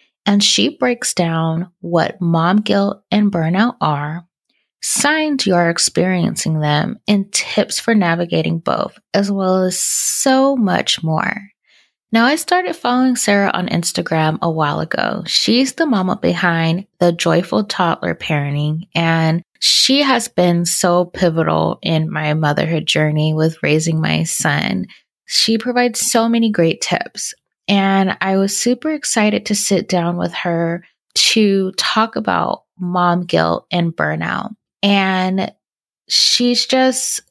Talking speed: 135 wpm